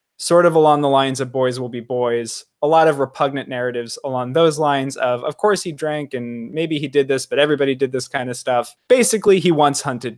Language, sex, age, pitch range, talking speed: English, male, 20-39, 130-150 Hz, 230 wpm